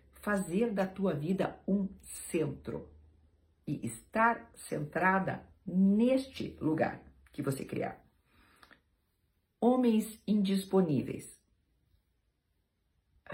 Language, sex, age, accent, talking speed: Portuguese, female, 50-69, Brazilian, 75 wpm